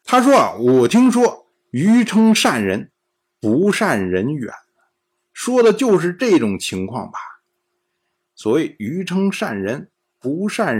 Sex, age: male, 50-69